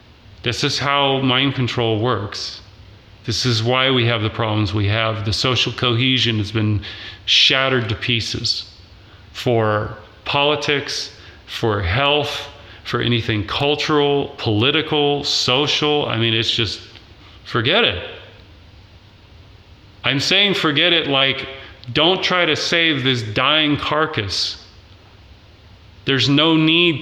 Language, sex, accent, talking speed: English, male, American, 120 wpm